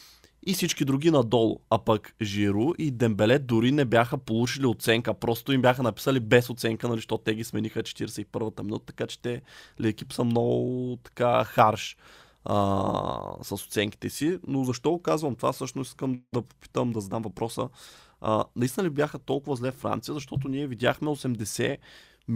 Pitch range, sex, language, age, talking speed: 115-140 Hz, male, Bulgarian, 20-39, 160 wpm